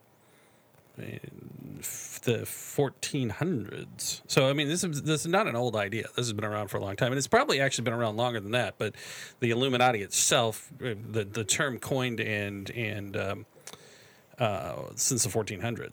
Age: 40-59